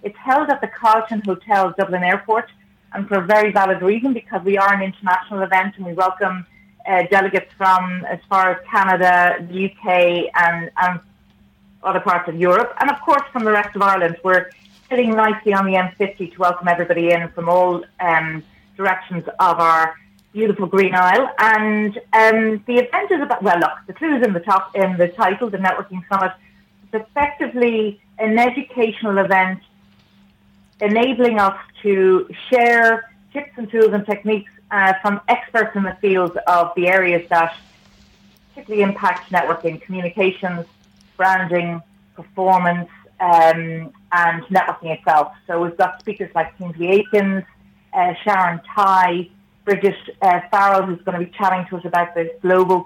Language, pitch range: English, 175-205 Hz